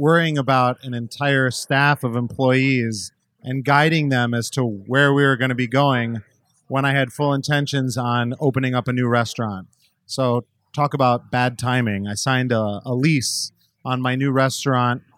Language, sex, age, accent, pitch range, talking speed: English, male, 30-49, American, 120-140 Hz, 175 wpm